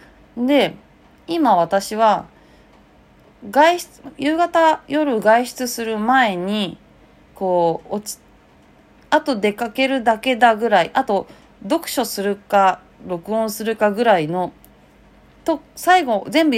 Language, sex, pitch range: Japanese, female, 165-265 Hz